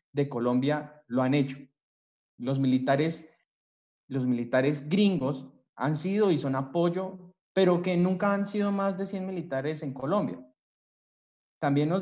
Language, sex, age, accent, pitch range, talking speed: Spanish, male, 20-39, Colombian, 120-160 Hz, 140 wpm